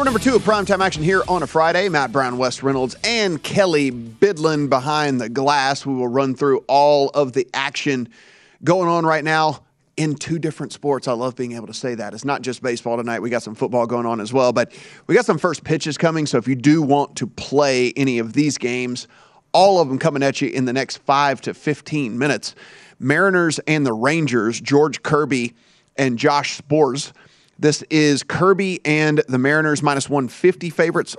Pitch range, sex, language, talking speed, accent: 130-155 Hz, male, English, 200 wpm, American